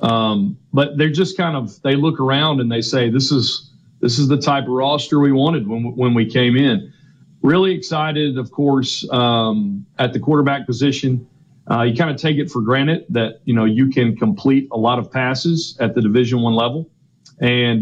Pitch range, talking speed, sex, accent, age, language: 115-140 Hz, 200 wpm, male, American, 40-59, English